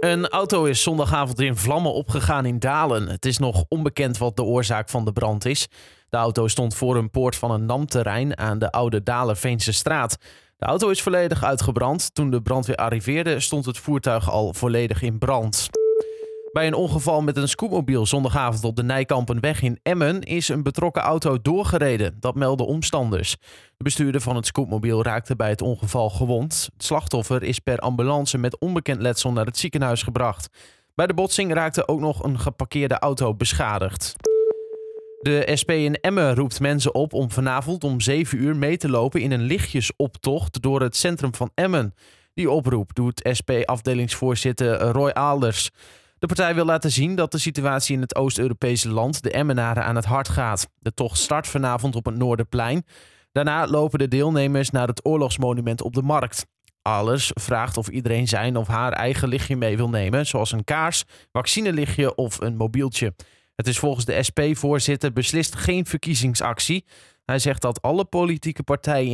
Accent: Dutch